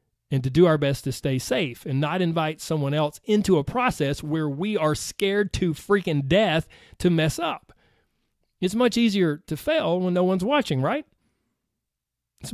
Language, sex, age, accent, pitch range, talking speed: English, male, 40-59, American, 160-220 Hz, 175 wpm